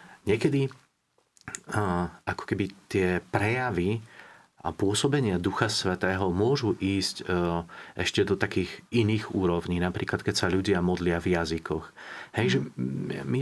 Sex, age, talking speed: male, 40-59, 115 wpm